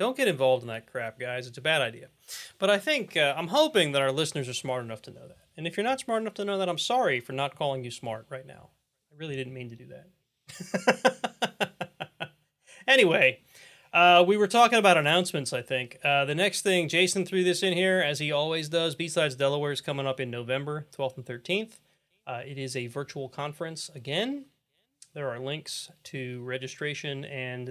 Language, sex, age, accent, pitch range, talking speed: English, male, 30-49, American, 130-175 Hz, 210 wpm